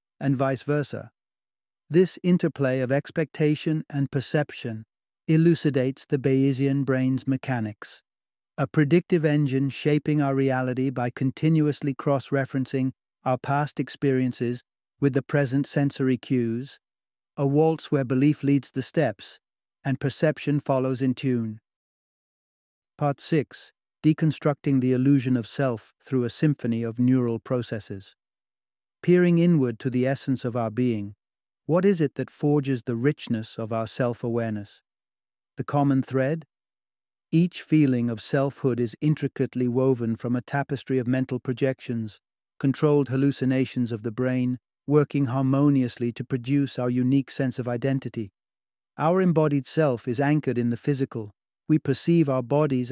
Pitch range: 125-145 Hz